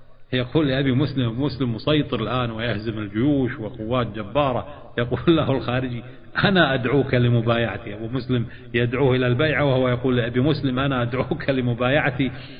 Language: Arabic